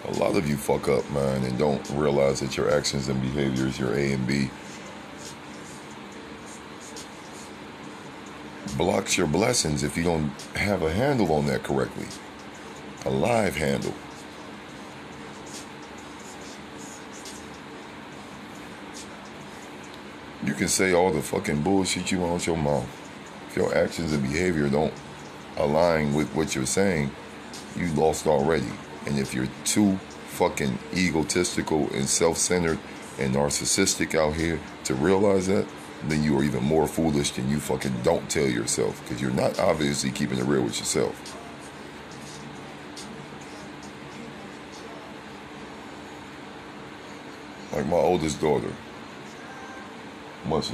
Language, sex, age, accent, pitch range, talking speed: English, male, 40-59, American, 70-75 Hz, 120 wpm